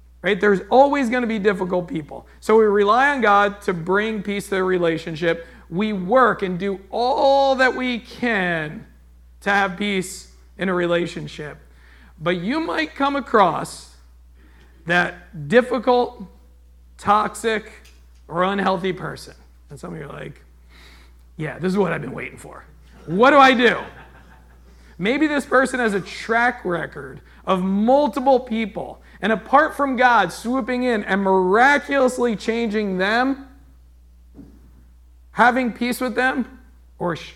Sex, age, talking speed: male, 40-59, 140 wpm